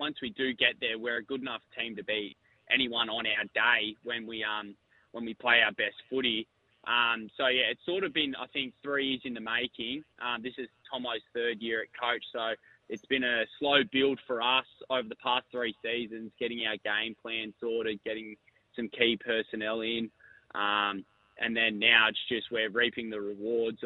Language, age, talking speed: English, 20-39, 200 wpm